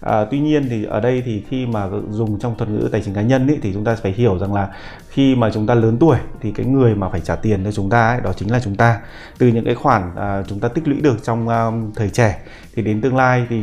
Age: 20-39